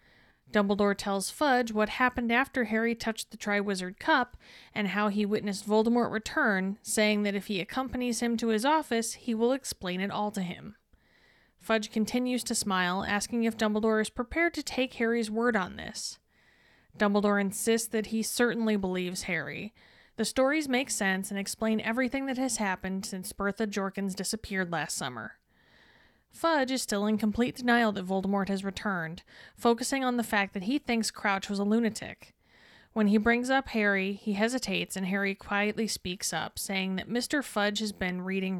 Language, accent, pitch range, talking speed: English, American, 195-235 Hz, 175 wpm